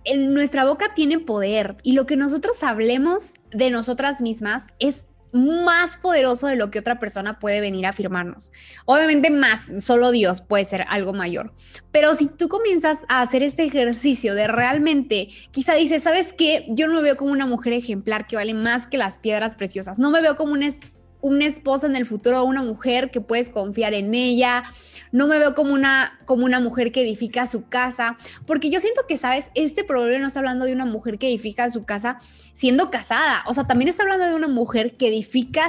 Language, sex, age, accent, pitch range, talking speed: Spanish, female, 20-39, Mexican, 230-285 Hz, 200 wpm